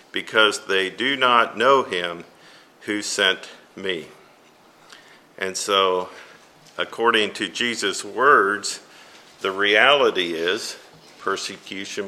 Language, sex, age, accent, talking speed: English, male, 50-69, American, 95 wpm